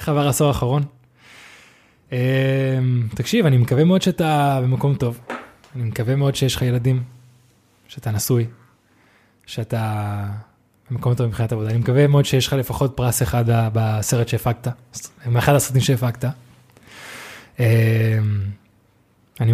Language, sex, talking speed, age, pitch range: Hebrew, male, 120 wpm, 20-39, 120-140 Hz